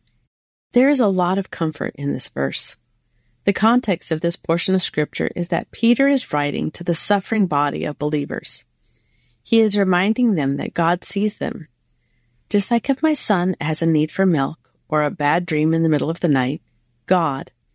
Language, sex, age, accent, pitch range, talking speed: English, female, 40-59, American, 140-200 Hz, 190 wpm